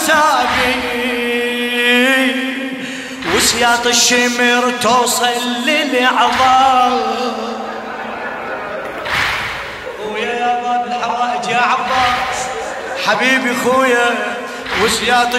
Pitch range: 240-270 Hz